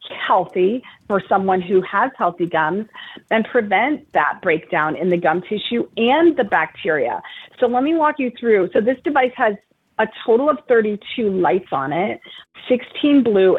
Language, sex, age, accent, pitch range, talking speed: English, female, 30-49, American, 175-230 Hz, 165 wpm